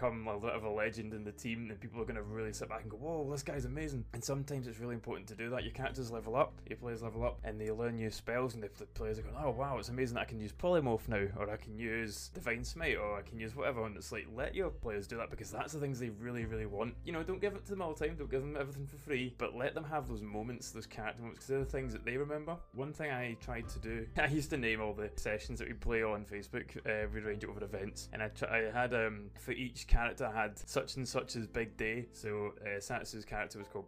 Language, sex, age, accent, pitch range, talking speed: English, male, 20-39, British, 110-135 Hz, 290 wpm